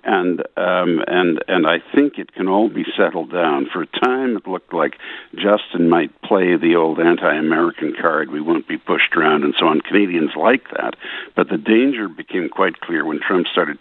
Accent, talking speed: American, 195 wpm